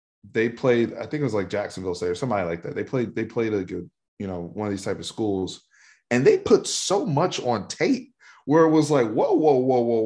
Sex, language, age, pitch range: male, English, 20-39, 105-150 Hz